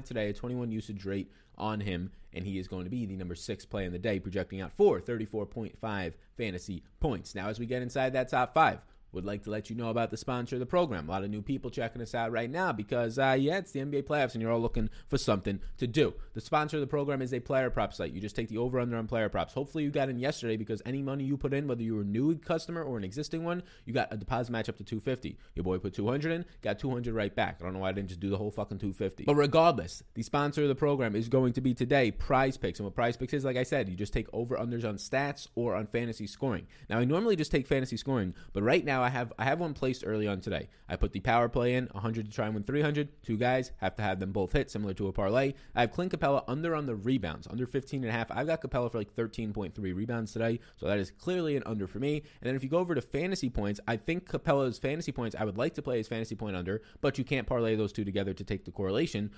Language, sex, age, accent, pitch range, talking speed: English, male, 30-49, American, 105-135 Hz, 280 wpm